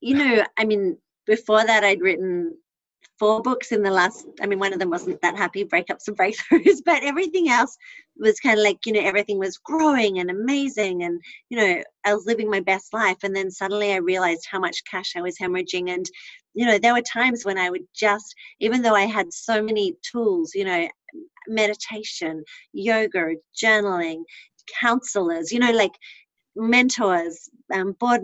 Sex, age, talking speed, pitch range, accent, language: female, 40-59, 185 wpm, 195-245 Hz, Australian, English